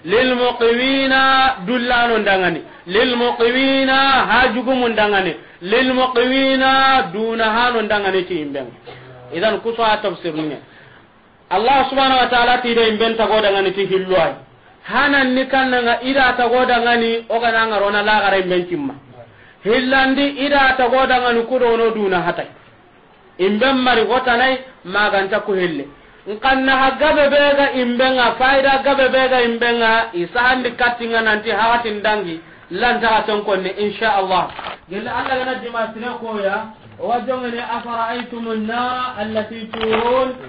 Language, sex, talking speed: English, male, 115 wpm